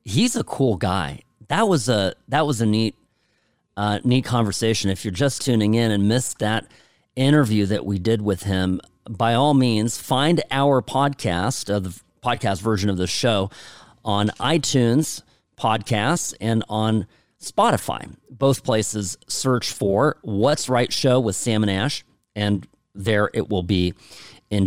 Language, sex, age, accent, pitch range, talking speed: English, male, 40-59, American, 100-130 Hz, 160 wpm